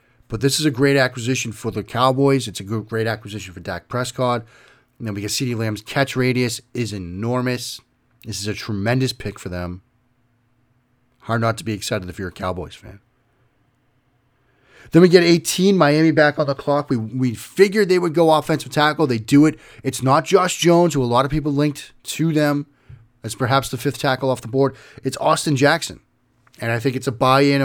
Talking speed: 200 wpm